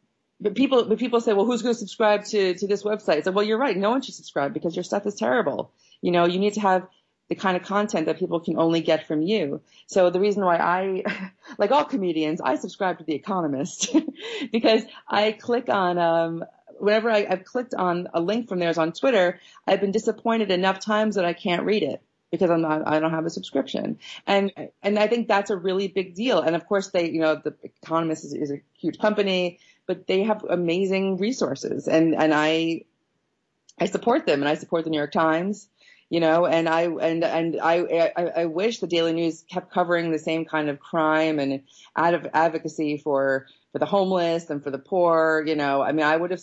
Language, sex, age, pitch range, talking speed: English, female, 40-59, 160-200 Hz, 220 wpm